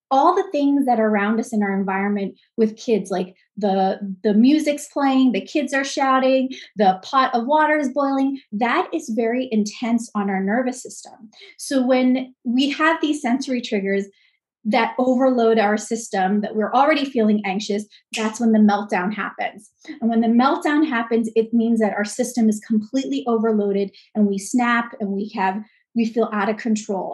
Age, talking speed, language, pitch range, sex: 30-49, 175 wpm, English, 210-255 Hz, female